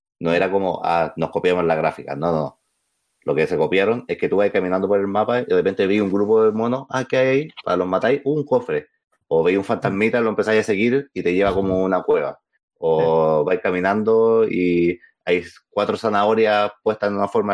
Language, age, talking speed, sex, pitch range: Spanish, 30-49, 220 wpm, male, 85-110 Hz